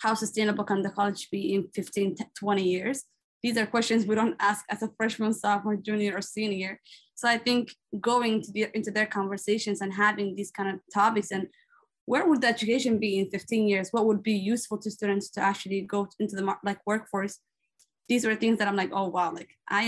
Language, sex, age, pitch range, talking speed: English, female, 20-39, 195-220 Hz, 200 wpm